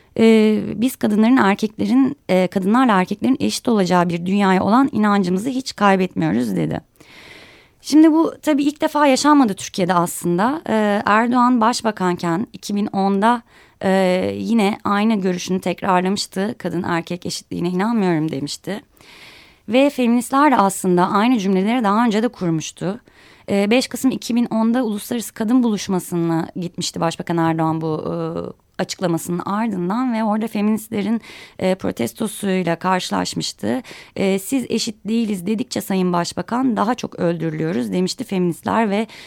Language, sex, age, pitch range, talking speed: Turkish, female, 30-49, 175-230 Hz, 125 wpm